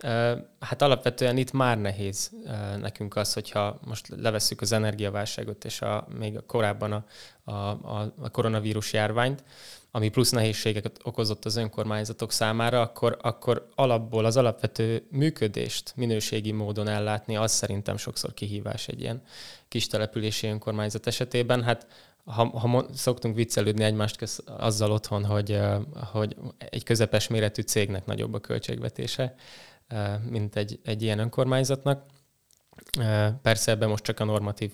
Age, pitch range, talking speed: 20-39, 105-125 Hz, 130 wpm